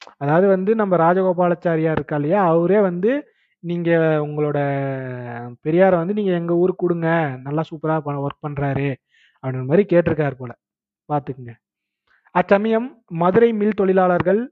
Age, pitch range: 30-49, 150-190 Hz